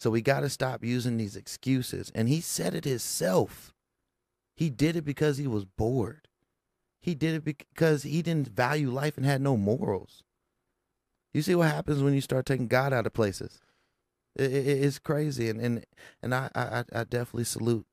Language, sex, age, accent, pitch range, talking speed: English, male, 30-49, American, 105-135 Hz, 185 wpm